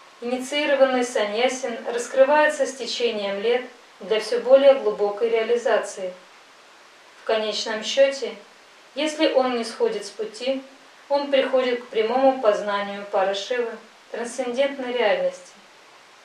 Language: Russian